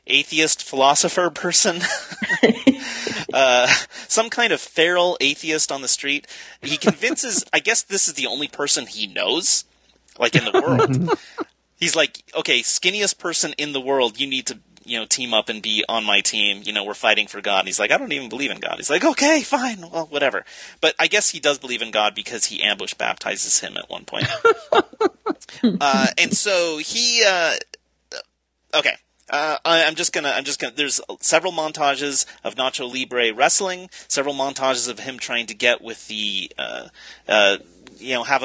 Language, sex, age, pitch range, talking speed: English, male, 30-49, 120-180 Hz, 185 wpm